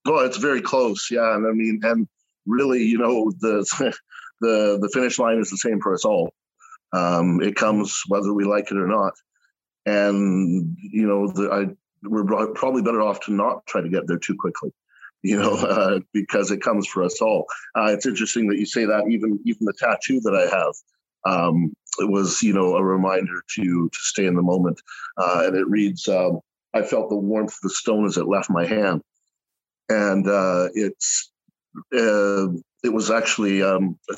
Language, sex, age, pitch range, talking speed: English, male, 50-69, 90-110 Hz, 195 wpm